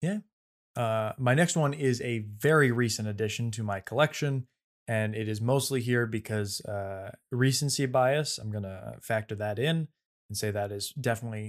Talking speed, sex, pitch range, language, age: 170 wpm, male, 105-130 Hz, English, 20-39